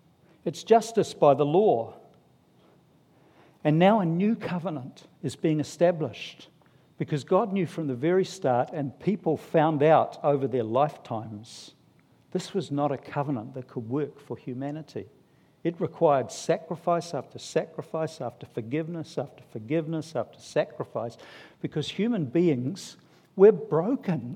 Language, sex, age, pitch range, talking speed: English, male, 60-79, 140-180 Hz, 130 wpm